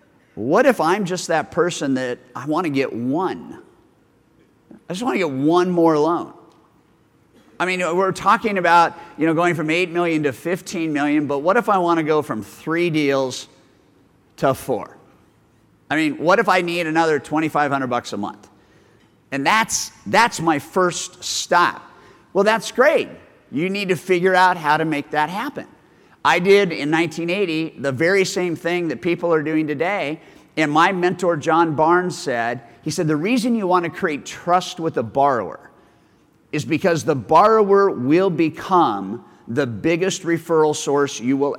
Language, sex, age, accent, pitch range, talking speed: English, male, 50-69, American, 150-185 Hz, 170 wpm